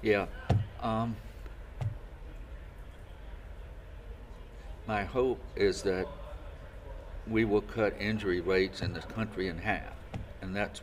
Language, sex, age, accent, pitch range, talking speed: English, male, 60-79, American, 85-95 Hz, 100 wpm